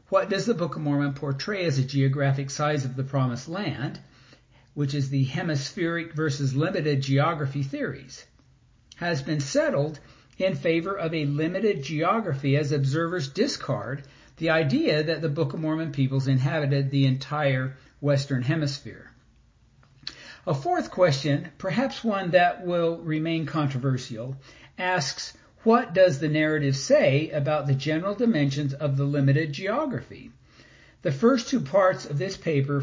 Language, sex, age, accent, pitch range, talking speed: English, male, 60-79, American, 140-175 Hz, 145 wpm